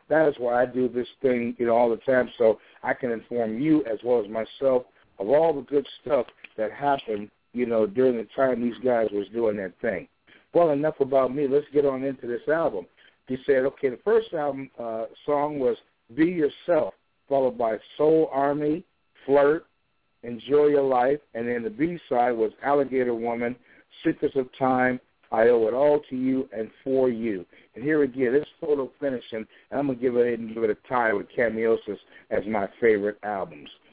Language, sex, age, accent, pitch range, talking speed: English, male, 60-79, American, 115-140 Hz, 190 wpm